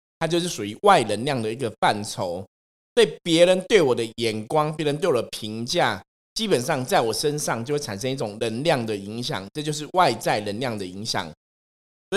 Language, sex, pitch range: Chinese, male, 105-150 Hz